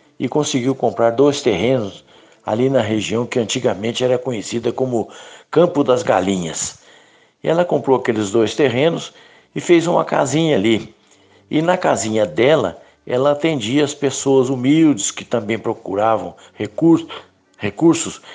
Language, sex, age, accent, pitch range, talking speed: Portuguese, male, 60-79, Brazilian, 110-145 Hz, 130 wpm